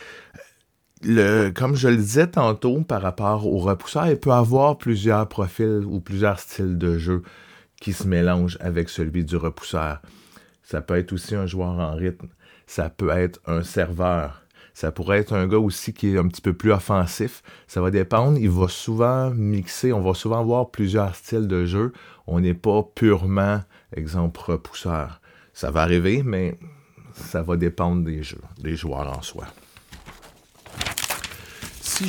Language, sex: French, male